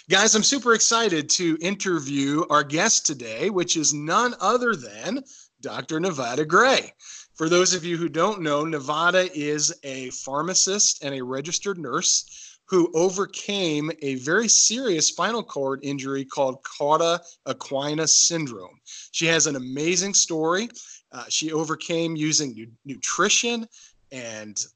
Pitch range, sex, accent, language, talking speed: 145-185 Hz, male, American, English, 135 wpm